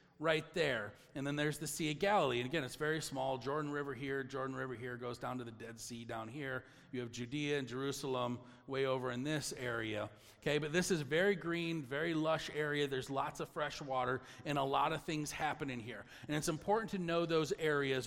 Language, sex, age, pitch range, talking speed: English, male, 40-59, 130-160 Hz, 225 wpm